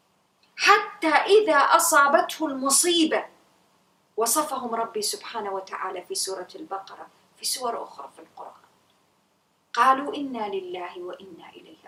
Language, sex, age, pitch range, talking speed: English, female, 30-49, 225-330 Hz, 105 wpm